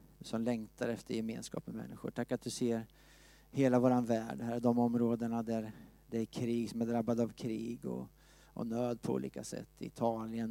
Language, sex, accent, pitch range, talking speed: Swedish, male, Norwegian, 115-140 Hz, 190 wpm